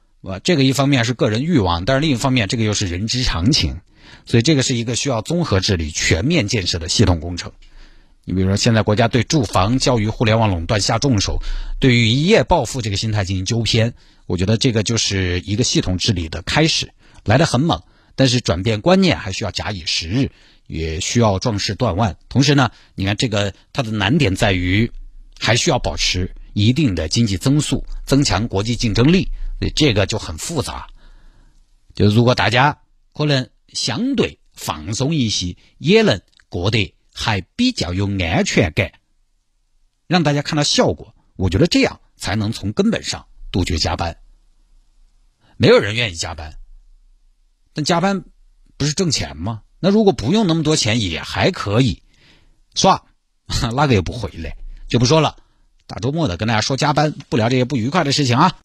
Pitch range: 95-135 Hz